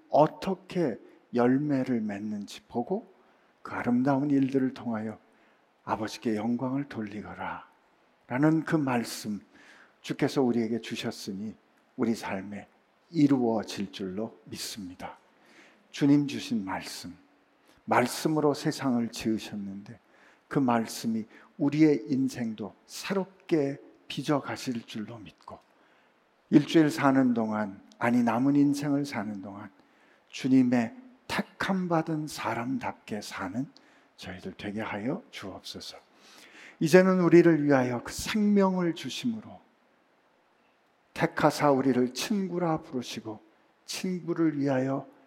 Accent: native